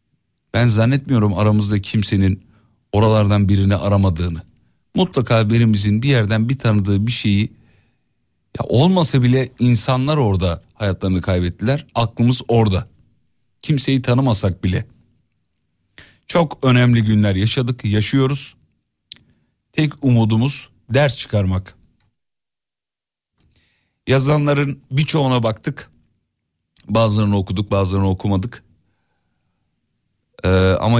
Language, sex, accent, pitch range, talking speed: Turkish, male, native, 95-115 Hz, 85 wpm